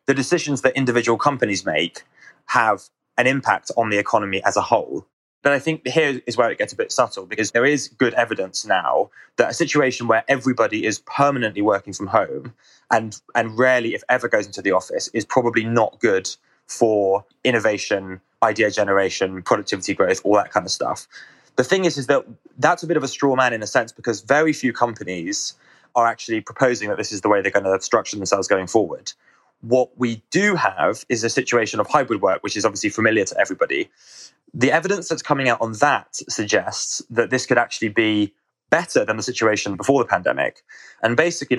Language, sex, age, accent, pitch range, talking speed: English, male, 20-39, British, 110-135 Hz, 200 wpm